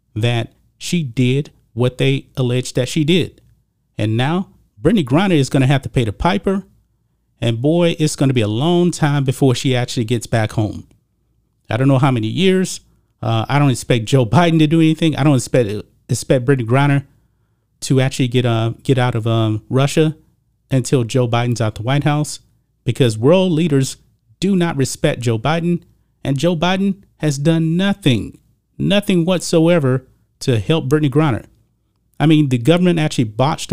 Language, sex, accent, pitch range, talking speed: English, male, American, 120-155 Hz, 175 wpm